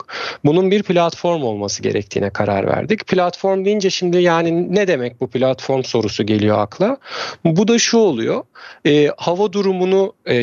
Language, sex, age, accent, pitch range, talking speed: Turkish, male, 40-59, native, 125-170 Hz, 150 wpm